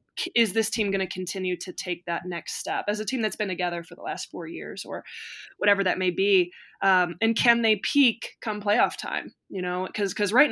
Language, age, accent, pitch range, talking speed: English, 20-39, American, 175-200 Hz, 230 wpm